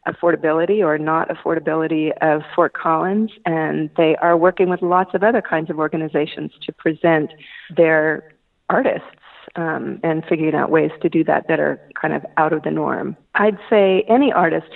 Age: 40-59